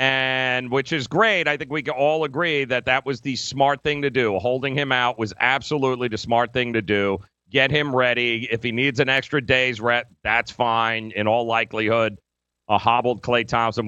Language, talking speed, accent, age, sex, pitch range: English, 205 wpm, American, 40-59, male, 110-150 Hz